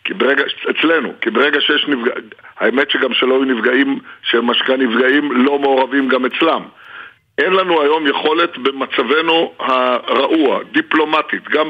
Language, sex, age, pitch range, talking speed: Hebrew, male, 50-69, 130-155 Hz, 135 wpm